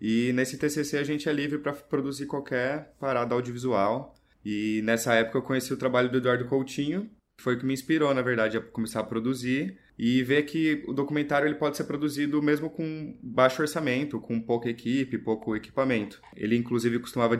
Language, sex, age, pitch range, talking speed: Portuguese, male, 20-39, 105-130 Hz, 190 wpm